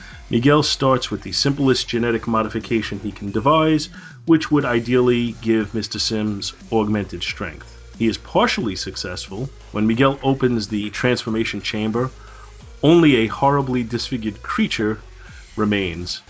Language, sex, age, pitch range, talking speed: English, male, 40-59, 100-125 Hz, 125 wpm